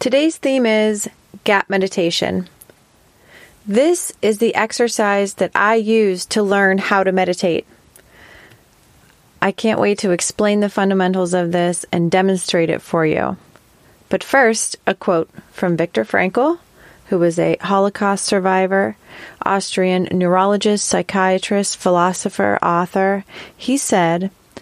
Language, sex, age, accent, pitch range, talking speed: English, female, 30-49, American, 175-205 Hz, 120 wpm